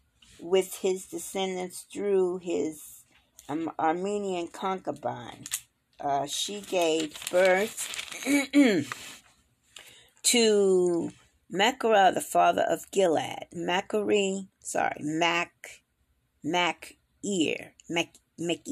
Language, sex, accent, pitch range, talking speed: English, female, American, 160-200 Hz, 75 wpm